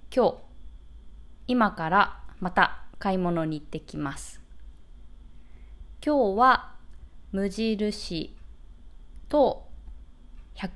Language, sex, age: Japanese, female, 20-39